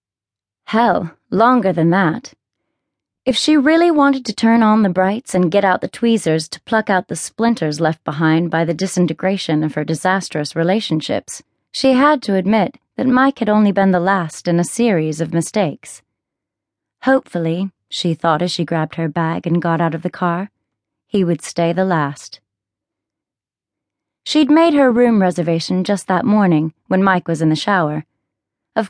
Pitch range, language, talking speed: 165-220 Hz, English, 170 wpm